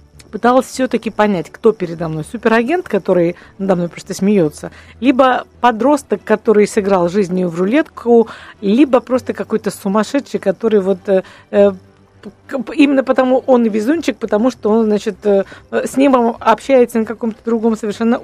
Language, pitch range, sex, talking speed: Russian, 195-245 Hz, female, 140 wpm